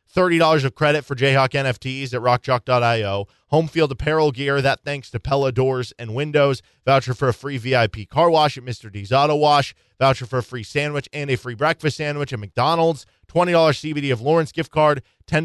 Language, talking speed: English, 200 wpm